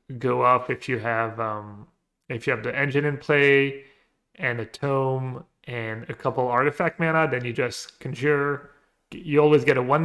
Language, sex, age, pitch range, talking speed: English, male, 30-49, 120-140 Hz, 180 wpm